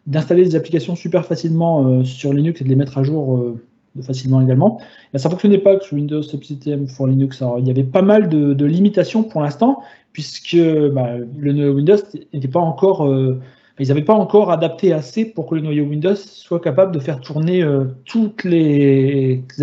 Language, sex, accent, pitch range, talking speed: French, male, French, 140-180 Hz, 200 wpm